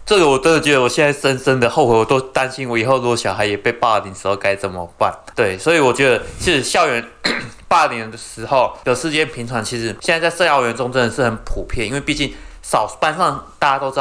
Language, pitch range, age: Chinese, 110-135 Hz, 20-39